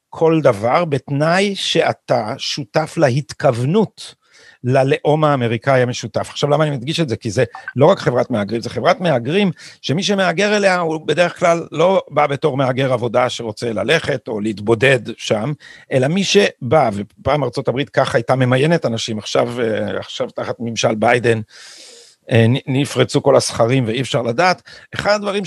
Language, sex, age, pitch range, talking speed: Hebrew, male, 50-69, 125-170 Hz, 145 wpm